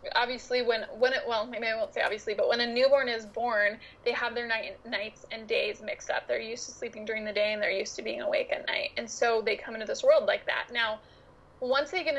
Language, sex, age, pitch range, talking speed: English, female, 20-39, 225-295 Hz, 260 wpm